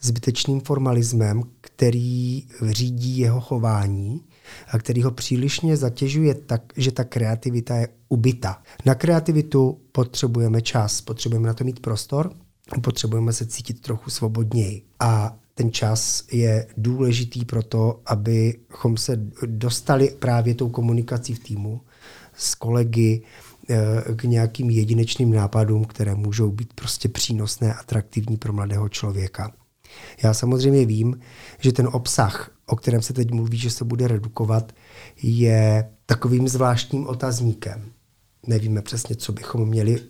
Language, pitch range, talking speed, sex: Czech, 110-125 Hz, 130 wpm, male